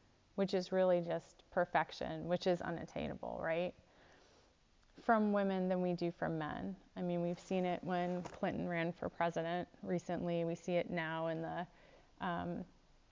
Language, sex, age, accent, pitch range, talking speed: English, female, 30-49, American, 175-210 Hz, 155 wpm